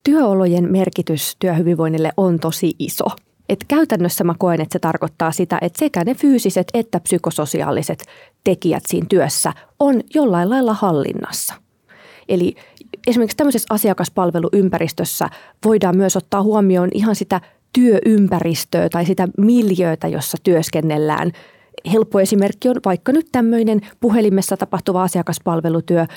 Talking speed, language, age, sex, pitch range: 120 wpm, Finnish, 30-49, female, 170-220 Hz